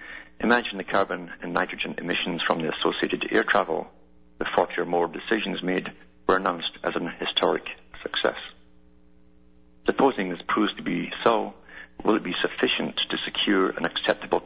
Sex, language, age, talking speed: male, English, 50-69, 155 wpm